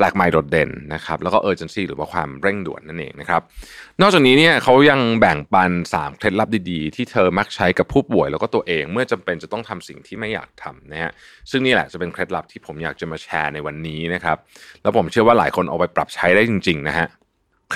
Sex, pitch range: male, 90-130 Hz